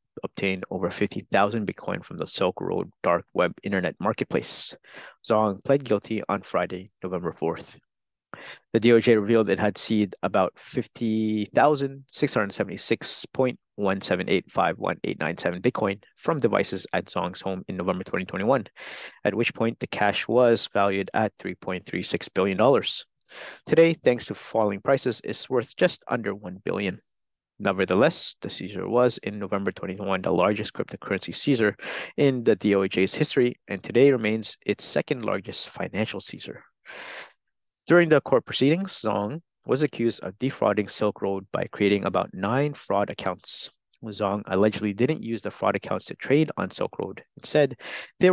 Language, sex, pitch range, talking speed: English, male, 100-125 Hz, 135 wpm